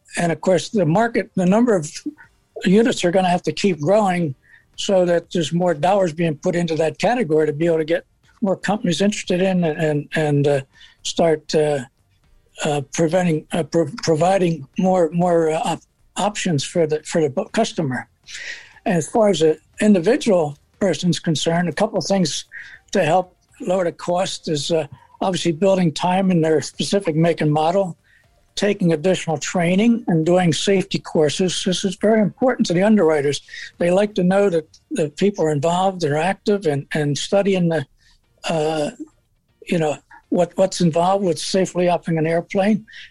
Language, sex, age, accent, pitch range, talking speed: English, male, 60-79, American, 160-195 Hz, 170 wpm